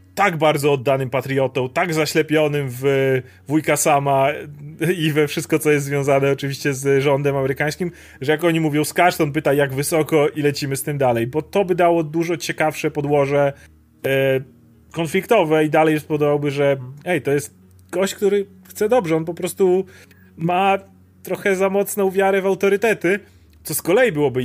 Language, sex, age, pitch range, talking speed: Polish, male, 30-49, 135-160 Hz, 160 wpm